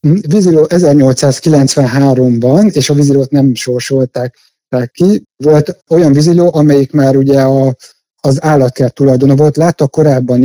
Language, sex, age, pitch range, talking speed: Hungarian, male, 60-79, 125-150 Hz, 120 wpm